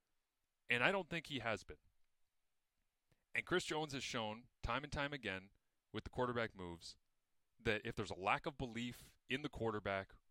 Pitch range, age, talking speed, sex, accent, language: 105-145 Hz, 30-49, 175 wpm, male, American, English